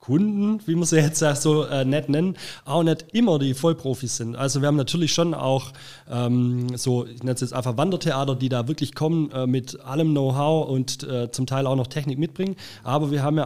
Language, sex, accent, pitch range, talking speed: German, male, German, 125-155 Hz, 225 wpm